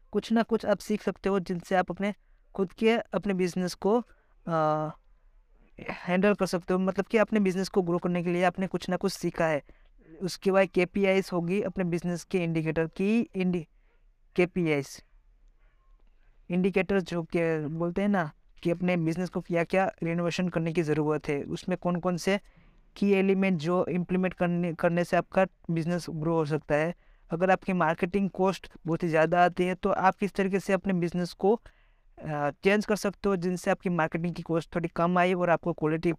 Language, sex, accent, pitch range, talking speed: Hindi, female, native, 170-190 Hz, 185 wpm